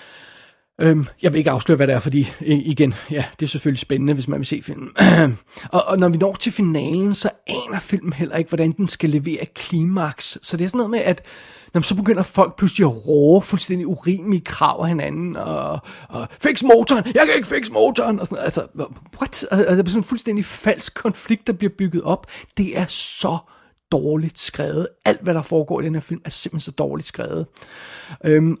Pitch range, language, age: 160-195 Hz, Danish, 30-49